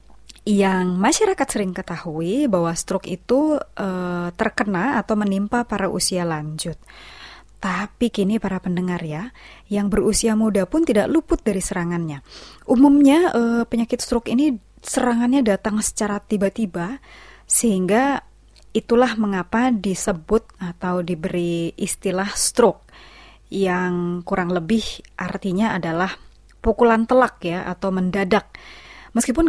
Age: 20-39